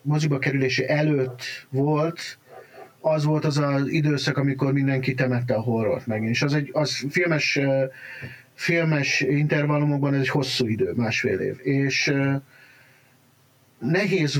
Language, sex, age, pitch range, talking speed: Hungarian, male, 50-69, 130-150 Hz, 130 wpm